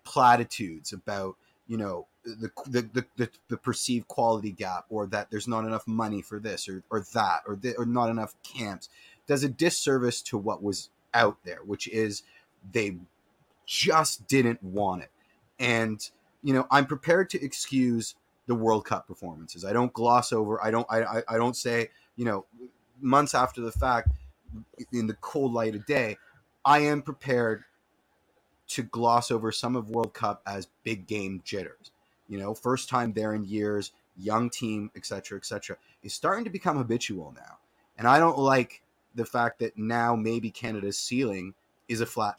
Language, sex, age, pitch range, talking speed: English, male, 30-49, 105-125 Hz, 175 wpm